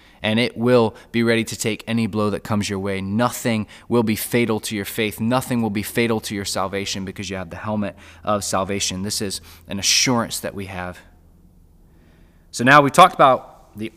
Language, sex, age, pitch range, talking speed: English, male, 20-39, 100-125 Hz, 200 wpm